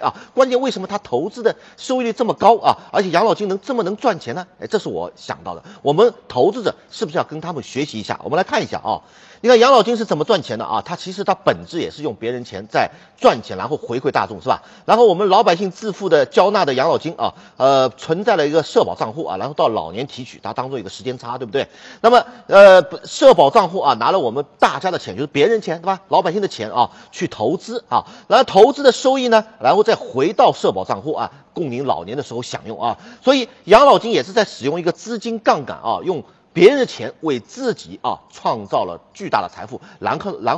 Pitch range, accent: 155-240 Hz, native